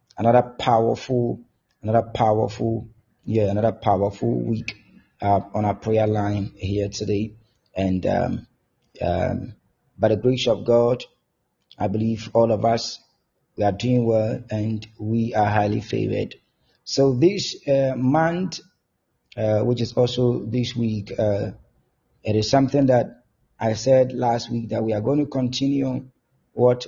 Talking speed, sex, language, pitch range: 140 wpm, male, English, 110-125 Hz